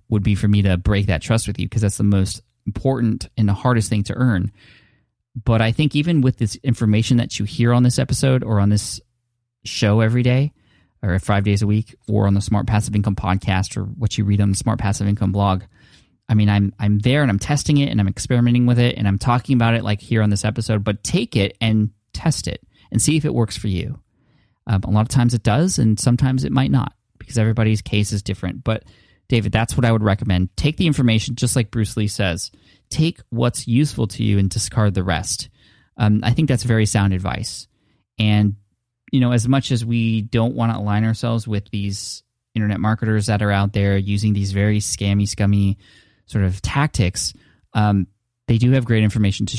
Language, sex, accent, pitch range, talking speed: English, male, American, 100-120 Hz, 220 wpm